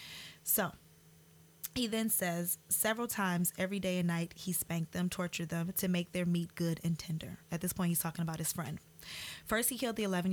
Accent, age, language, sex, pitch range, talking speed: American, 20-39, English, female, 165-185 Hz, 205 wpm